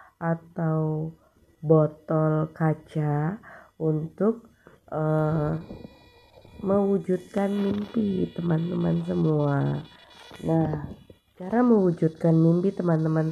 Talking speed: 65 wpm